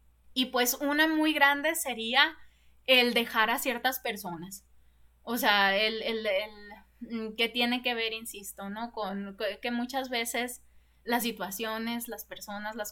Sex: female